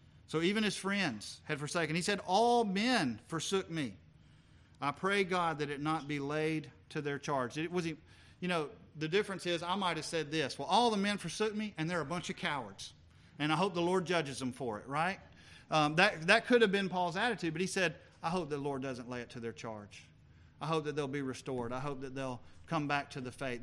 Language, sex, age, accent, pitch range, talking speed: English, male, 40-59, American, 140-170 Hz, 240 wpm